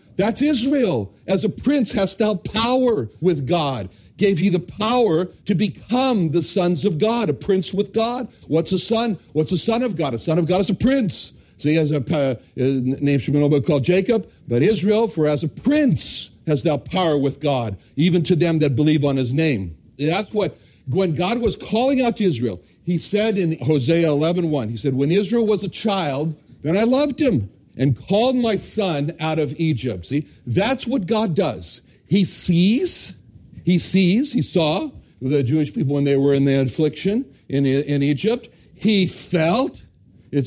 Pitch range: 140-205 Hz